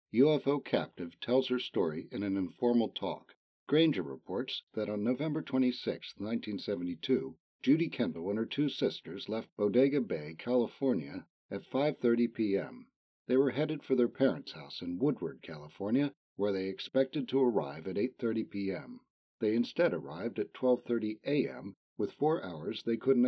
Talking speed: 150 wpm